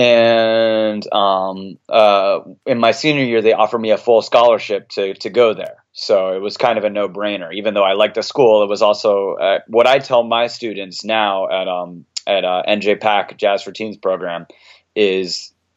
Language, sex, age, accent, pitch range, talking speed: English, male, 20-39, American, 95-110 Hz, 195 wpm